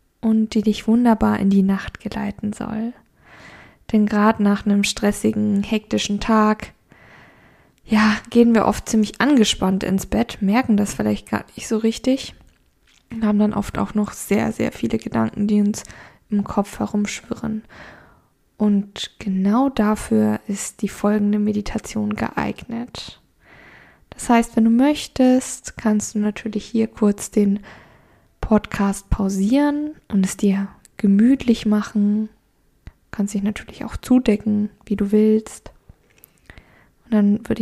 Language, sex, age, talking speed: German, female, 10-29, 135 wpm